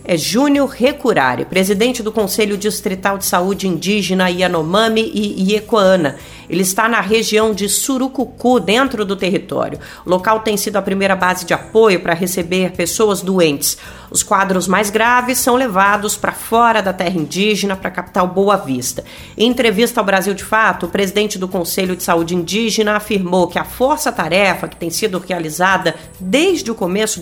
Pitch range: 185-225 Hz